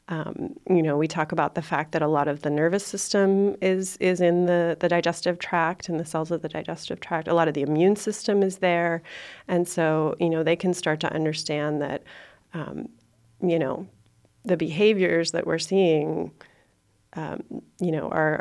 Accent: American